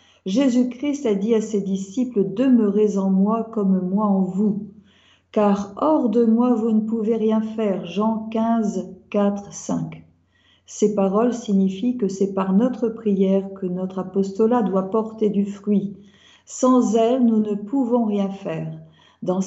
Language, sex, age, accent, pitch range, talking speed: French, female, 50-69, French, 195-230 Hz, 155 wpm